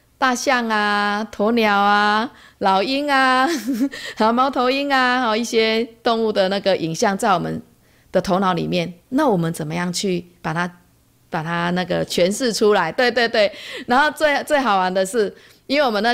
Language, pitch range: Chinese, 180-225 Hz